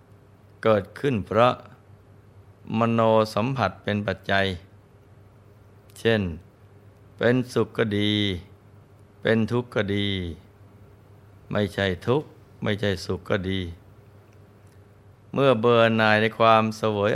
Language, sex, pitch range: Thai, male, 100-110 Hz